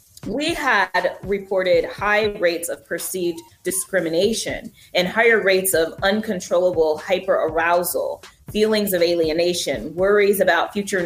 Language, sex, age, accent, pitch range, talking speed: English, female, 30-49, American, 180-240 Hz, 115 wpm